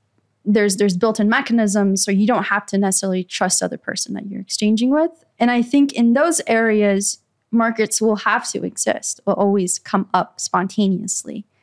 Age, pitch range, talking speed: 20-39, 185-230 Hz, 175 wpm